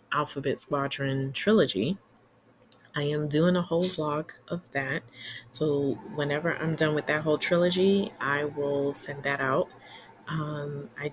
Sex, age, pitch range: female, 20-39, 135-160 Hz